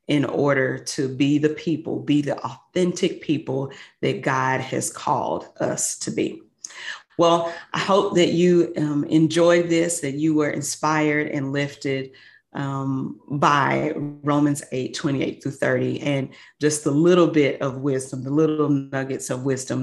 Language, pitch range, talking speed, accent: English, 140-165 Hz, 150 wpm, American